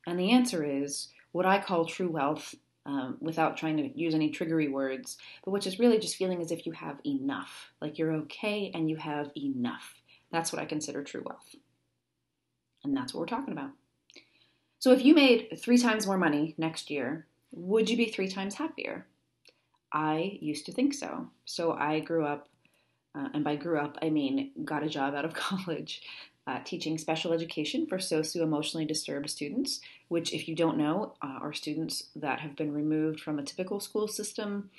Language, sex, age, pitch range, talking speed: English, female, 30-49, 150-200 Hz, 190 wpm